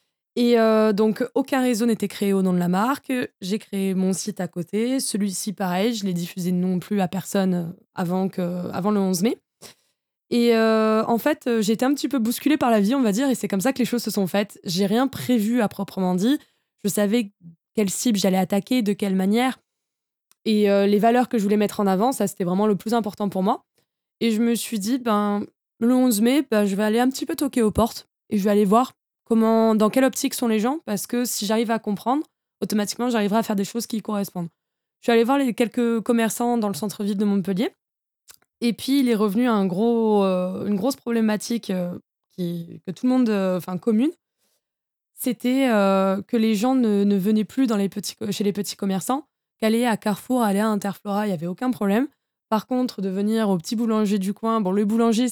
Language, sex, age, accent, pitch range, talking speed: French, female, 20-39, French, 200-240 Hz, 225 wpm